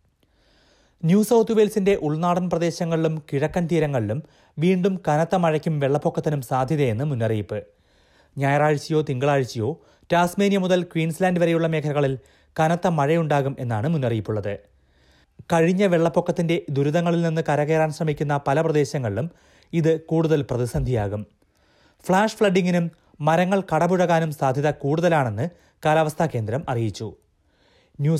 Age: 30-49